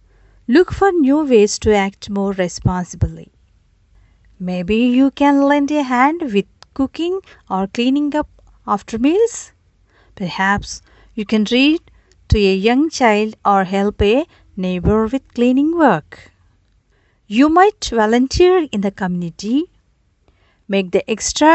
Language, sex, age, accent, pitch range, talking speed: Telugu, female, 50-69, native, 180-285 Hz, 125 wpm